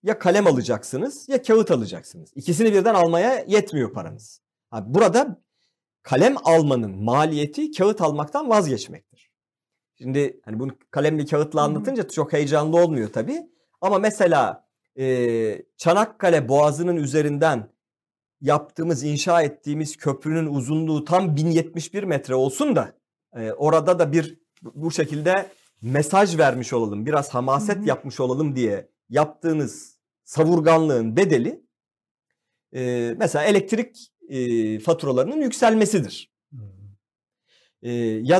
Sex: male